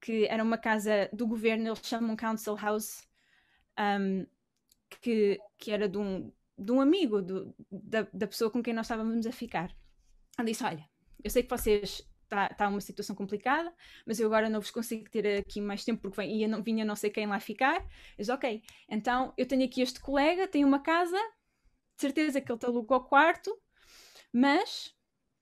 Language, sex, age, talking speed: Portuguese, female, 20-39, 190 wpm